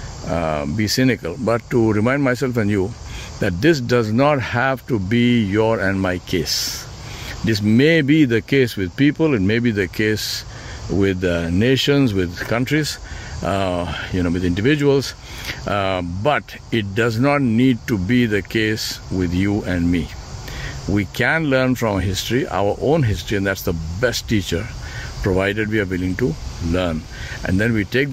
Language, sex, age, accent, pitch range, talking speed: English, male, 60-79, Indian, 95-120 Hz, 170 wpm